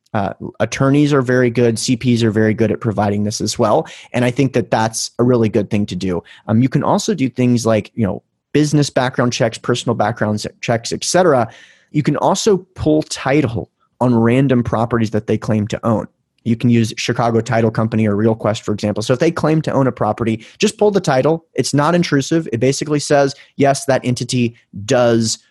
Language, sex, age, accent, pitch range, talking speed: English, male, 30-49, American, 115-145 Hz, 205 wpm